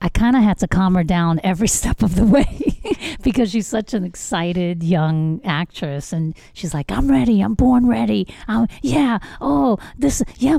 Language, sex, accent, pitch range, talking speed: English, female, American, 155-225 Hz, 185 wpm